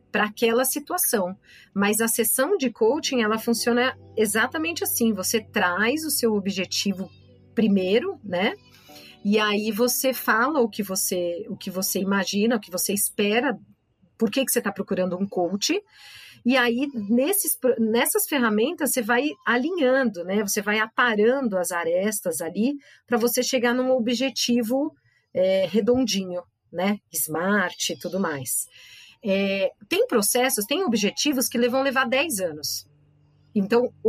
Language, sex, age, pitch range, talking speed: Portuguese, female, 40-59, 200-260 Hz, 140 wpm